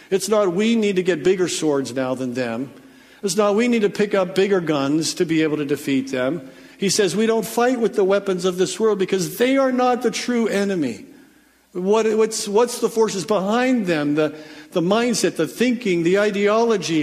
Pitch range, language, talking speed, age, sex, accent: 175-220 Hz, English, 205 wpm, 50-69, male, American